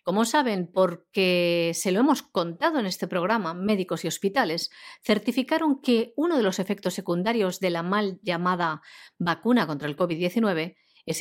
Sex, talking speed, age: female, 155 wpm, 50-69